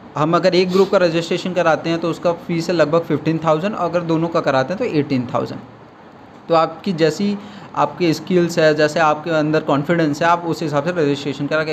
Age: 20-39